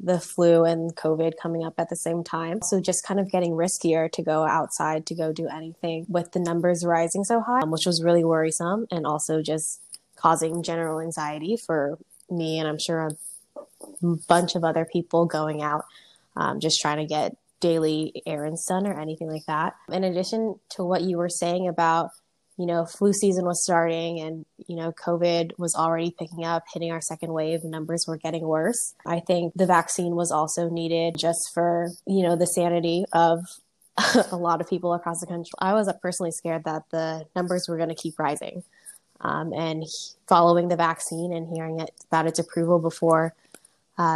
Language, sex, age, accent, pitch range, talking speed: English, female, 10-29, American, 160-175 Hz, 195 wpm